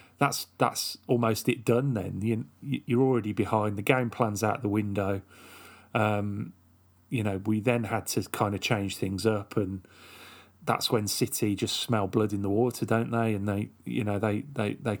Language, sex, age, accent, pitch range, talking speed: English, male, 30-49, British, 105-120 Hz, 190 wpm